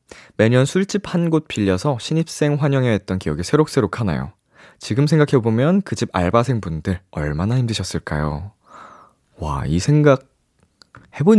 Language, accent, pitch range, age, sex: Korean, native, 90-135 Hz, 20-39, male